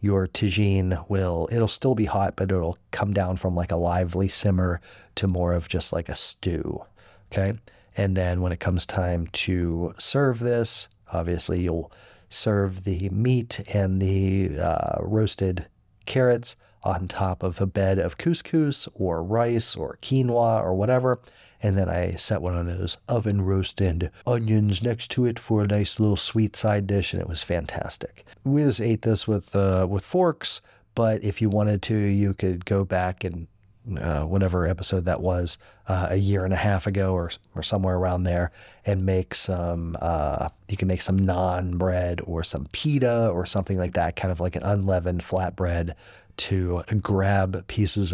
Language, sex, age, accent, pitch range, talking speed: English, male, 40-59, American, 90-110 Hz, 175 wpm